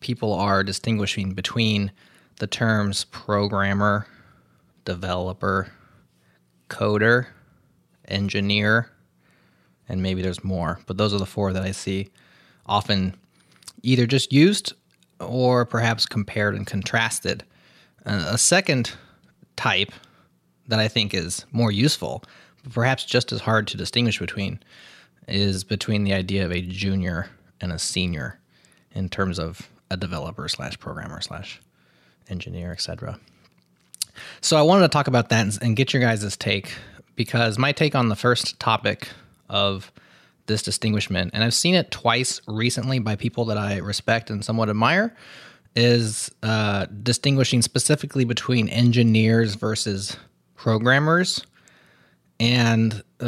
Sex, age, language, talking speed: male, 20-39, English, 125 wpm